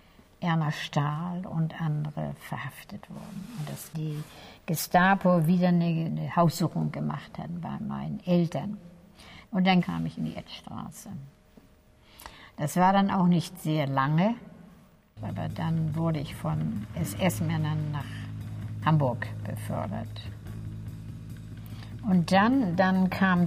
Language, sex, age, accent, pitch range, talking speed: German, female, 60-79, German, 150-180 Hz, 120 wpm